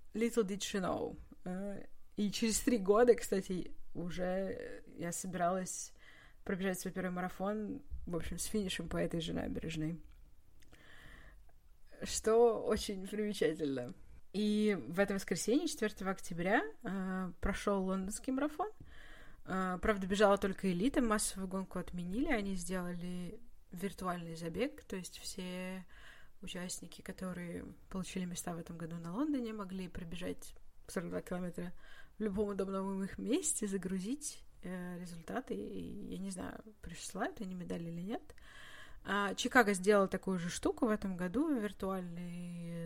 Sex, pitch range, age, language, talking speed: female, 175-215 Hz, 20-39, Russian, 125 wpm